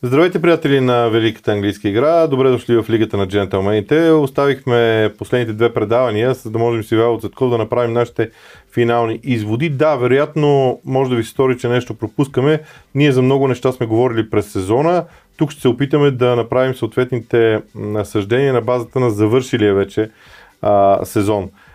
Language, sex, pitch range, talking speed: Bulgarian, male, 120-170 Hz, 165 wpm